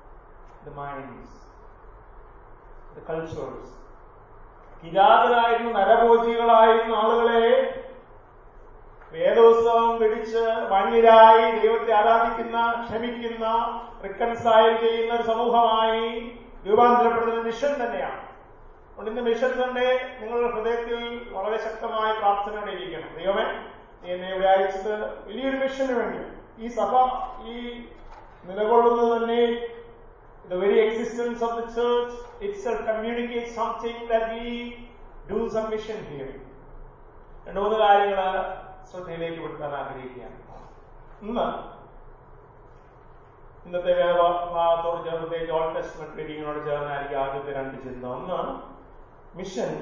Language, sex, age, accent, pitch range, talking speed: English, male, 30-49, Indian, 175-235 Hz, 65 wpm